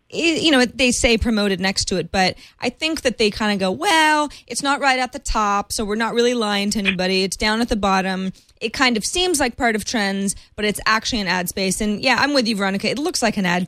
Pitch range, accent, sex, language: 185-230 Hz, American, female, English